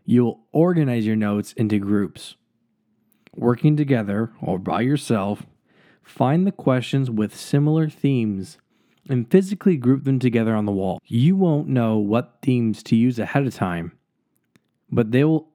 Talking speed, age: 150 wpm, 20-39